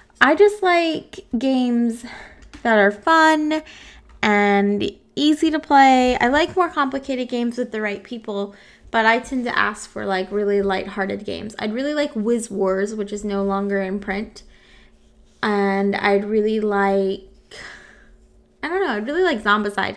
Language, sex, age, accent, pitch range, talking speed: English, female, 20-39, American, 195-245 Hz, 155 wpm